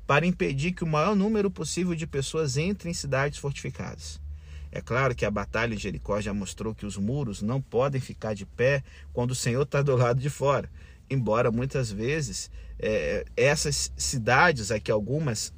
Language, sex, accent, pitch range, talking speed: Portuguese, male, Brazilian, 110-165 Hz, 175 wpm